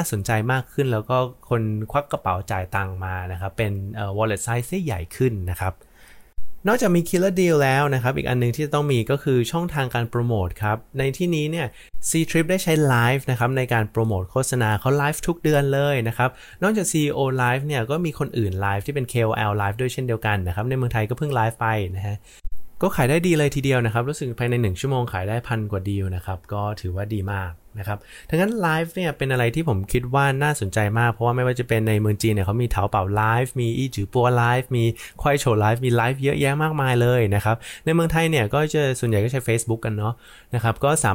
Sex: male